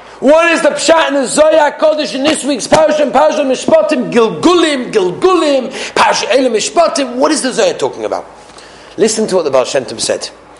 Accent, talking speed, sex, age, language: British, 175 wpm, male, 40-59, English